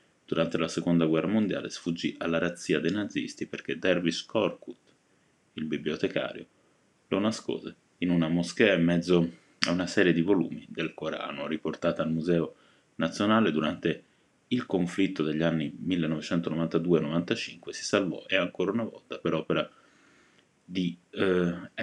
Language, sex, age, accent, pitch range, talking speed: Italian, male, 30-49, native, 80-95 Hz, 135 wpm